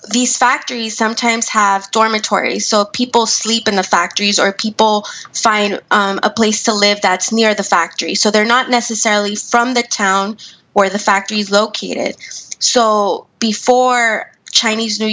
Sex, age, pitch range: female, 20-39, 200-235 Hz